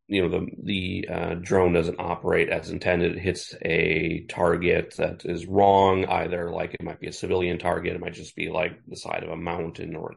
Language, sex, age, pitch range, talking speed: English, male, 30-49, 85-95 Hz, 220 wpm